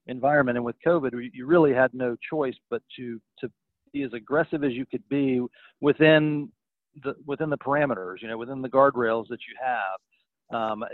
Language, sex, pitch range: English, male, 115-135 Hz